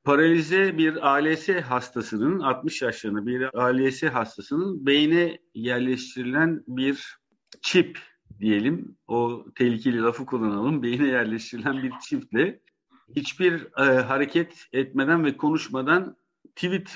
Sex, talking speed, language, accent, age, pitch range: male, 105 wpm, Turkish, native, 50-69, 125-165 Hz